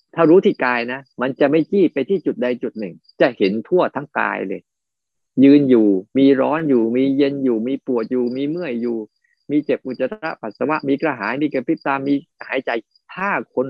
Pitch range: 125-160 Hz